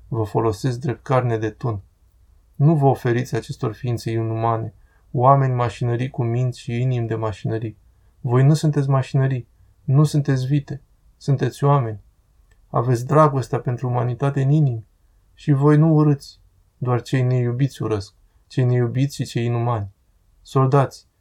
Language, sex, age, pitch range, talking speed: Romanian, male, 20-39, 115-135 Hz, 140 wpm